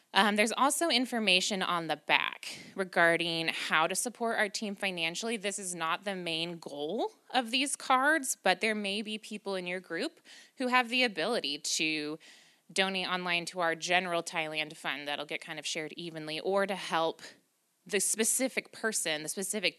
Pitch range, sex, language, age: 165-235 Hz, female, English, 20-39